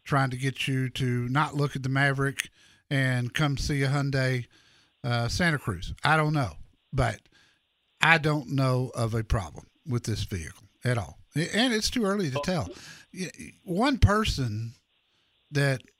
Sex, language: male, English